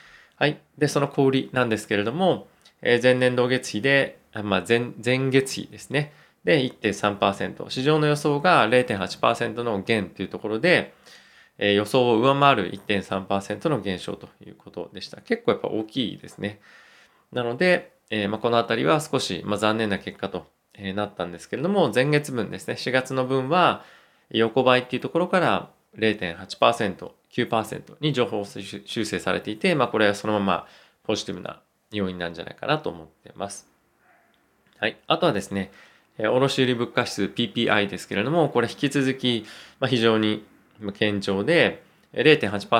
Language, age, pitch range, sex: Japanese, 20-39, 100-135 Hz, male